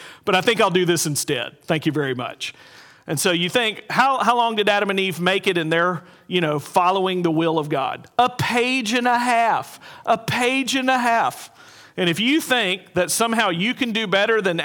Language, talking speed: English, 220 wpm